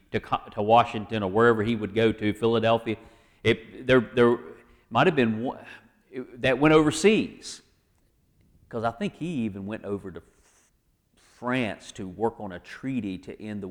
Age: 40-59